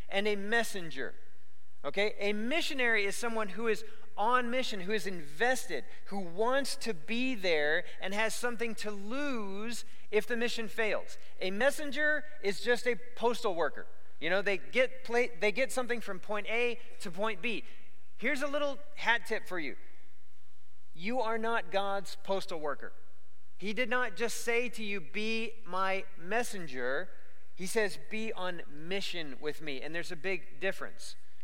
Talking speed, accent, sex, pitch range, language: 160 wpm, American, male, 165-230 Hz, English